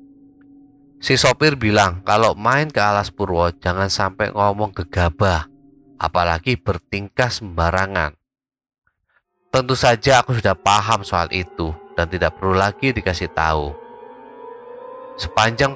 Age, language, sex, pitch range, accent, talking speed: 20-39, Indonesian, male, 95-140 Hz, native, 110 wpm